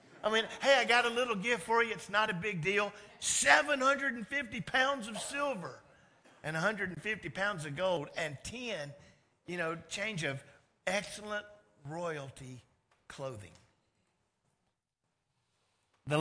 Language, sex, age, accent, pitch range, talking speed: English, male, 50-69, American, 135-195 Hz, 125 wpm